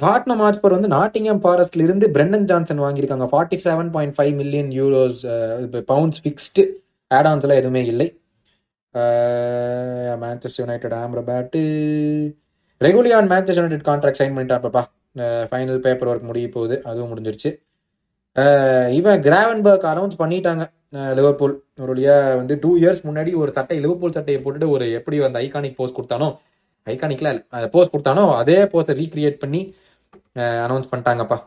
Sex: male